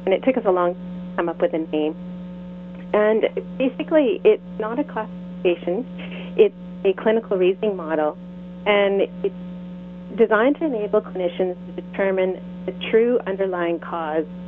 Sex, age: female, 30-49